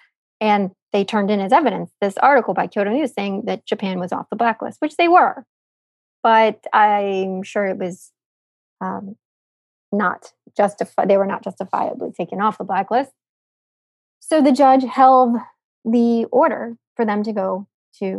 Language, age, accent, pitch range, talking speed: English, 20-39, American, 200-235 Hz, 160 wpm